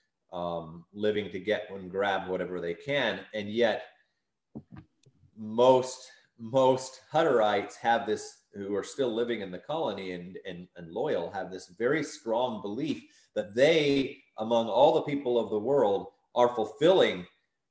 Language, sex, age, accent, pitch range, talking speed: English, male, 30-49, American, 95-125 Hz, 145 wpm